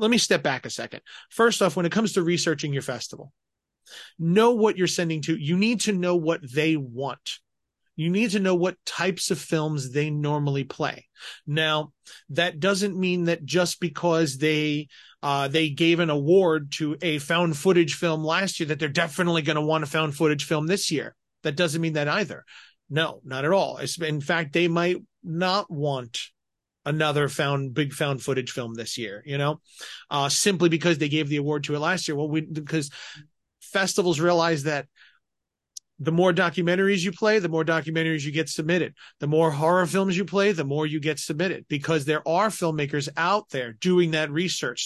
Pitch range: 145-175 Hz